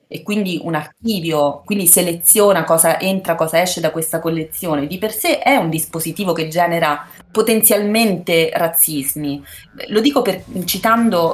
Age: 30-49